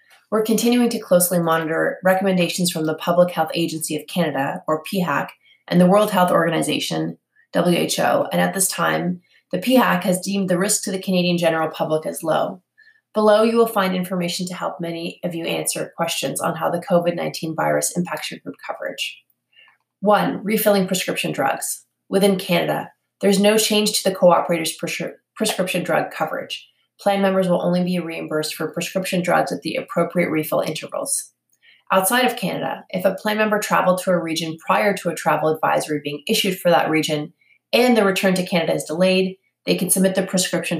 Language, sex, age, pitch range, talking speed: English, female, 20-39, 165-200 Hz, 180 wpm